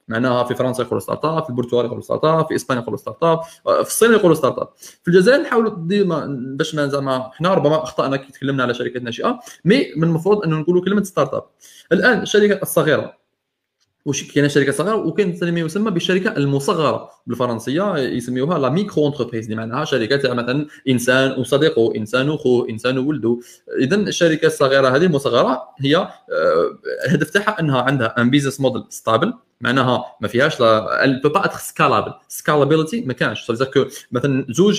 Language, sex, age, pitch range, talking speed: Arabic, male, 20-39, 125-175 Hz, 165 wpm